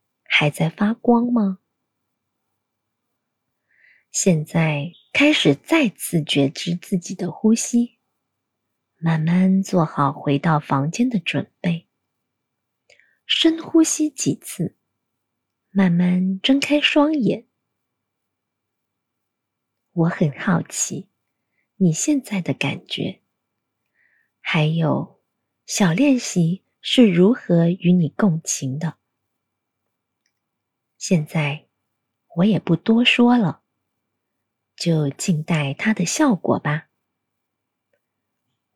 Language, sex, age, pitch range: Chinese, female, 20-39, 140-205 Hz